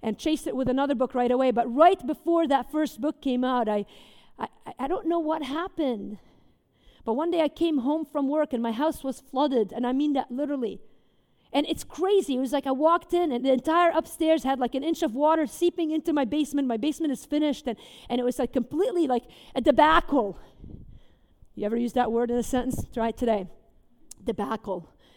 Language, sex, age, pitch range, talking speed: English, female, 40-59, 245-330 Hz, 210 wpm